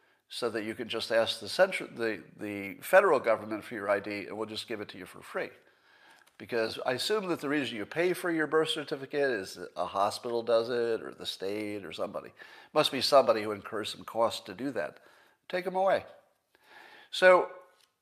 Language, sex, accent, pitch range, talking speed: English, male, American, 115-180 Hz, 195 wpm